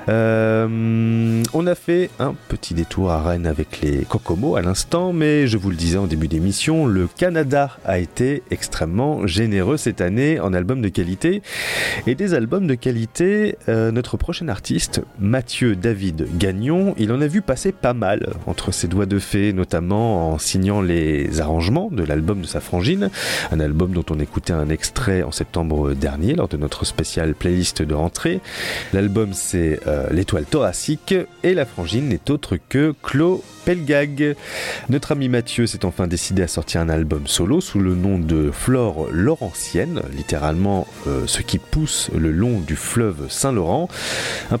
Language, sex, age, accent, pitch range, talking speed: French, male, 30-49, French, 85-130 Hz, 170 wpm